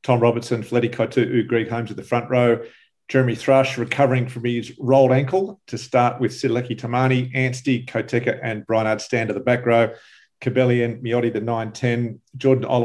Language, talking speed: English, 170 wpm